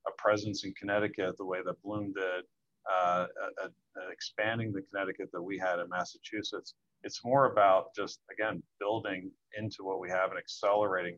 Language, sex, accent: English, male, American